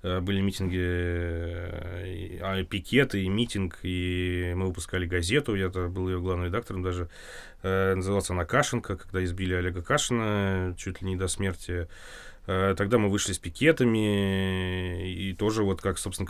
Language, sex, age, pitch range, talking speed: Russian, male, 20-39, 90-100 Hz, 135 wpm